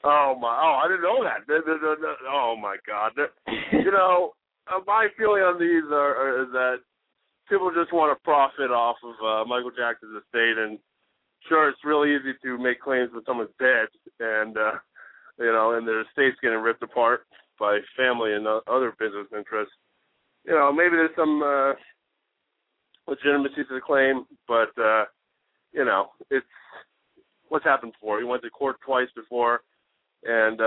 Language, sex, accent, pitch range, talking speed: English, male, American, 115-145 Hz, 160 wpm